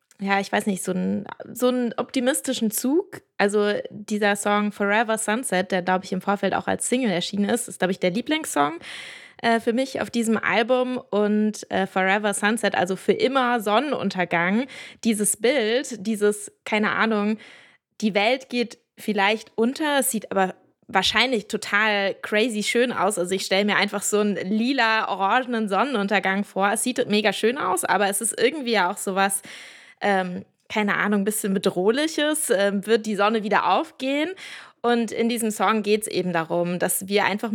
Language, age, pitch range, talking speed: German, 20-39, 190-230 Hz, 165 wpm